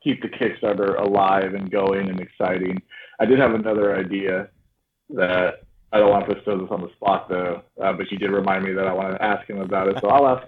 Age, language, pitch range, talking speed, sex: 20-39, English, 100-115 Hz, 235 wpm, male